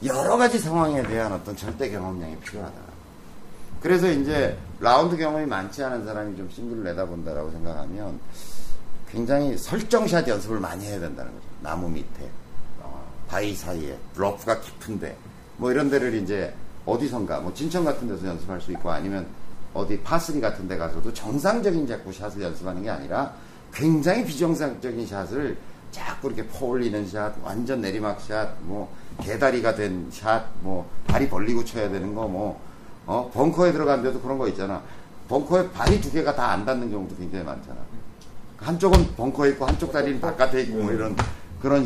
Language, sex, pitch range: Korean, male, 95-145 Hz